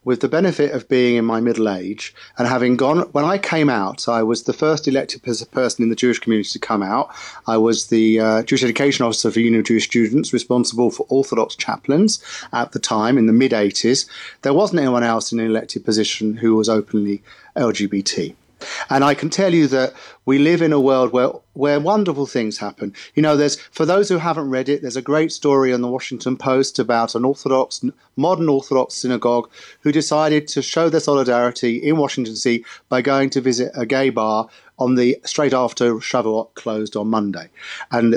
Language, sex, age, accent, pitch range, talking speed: English, male, 40-59, British, 115-145 Hz, 200 wpm